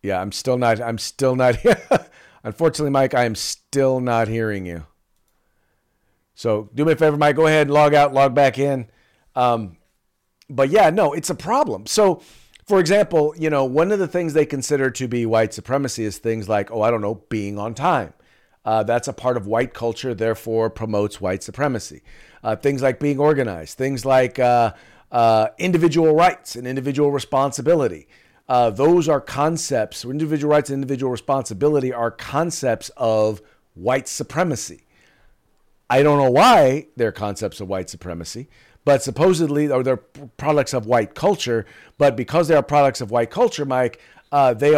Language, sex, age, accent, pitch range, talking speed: English, male, 40-59, American, 110-150 Hz, 175 wpm